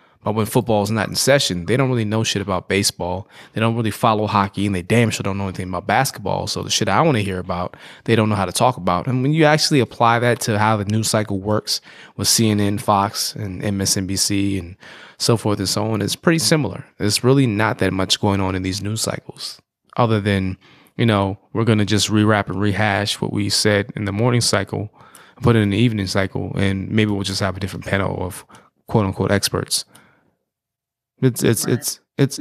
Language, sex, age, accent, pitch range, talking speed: English, male, 20-39, American, 100-120 Hz, 220 wpm